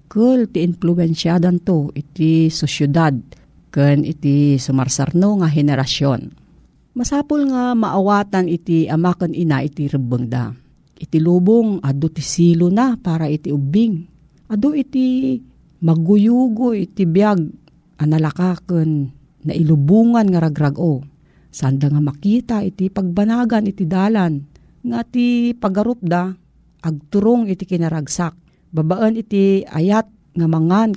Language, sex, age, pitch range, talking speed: Filipino, female, 50-69, 155-205 Hz, 110 wpm